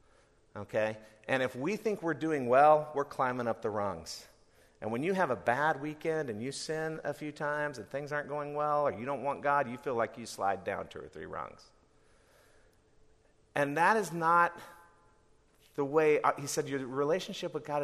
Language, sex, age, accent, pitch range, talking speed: English, male, 50-69, American, 125-165 Hz, 195 wpm